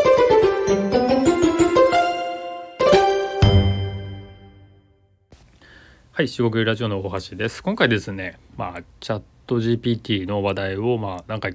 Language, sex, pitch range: Japanese, male, 95-135 Hz